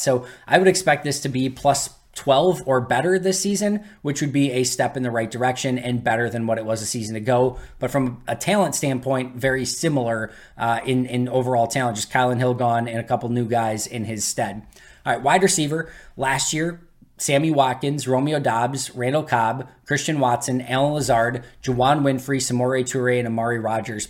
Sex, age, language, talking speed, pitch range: male, 20-39, English, 195 wpm, 120-140 Hz